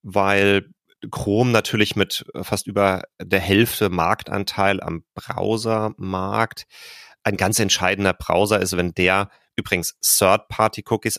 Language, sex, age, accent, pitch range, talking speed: German, male, 30-49, German, 85-105 Hz, 105 wpm